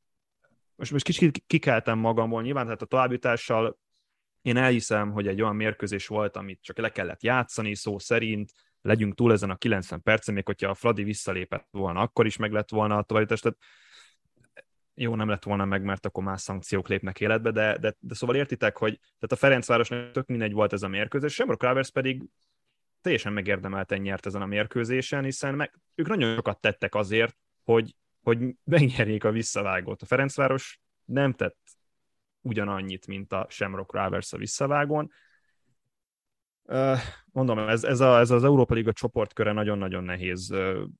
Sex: male